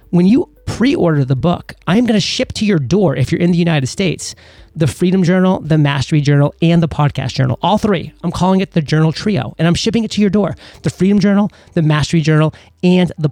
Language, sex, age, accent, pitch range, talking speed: English, male, 30-49, American, 140-170 Hz, 230 wpm